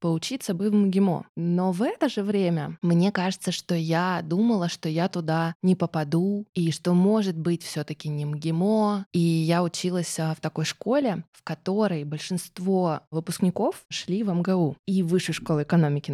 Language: Russian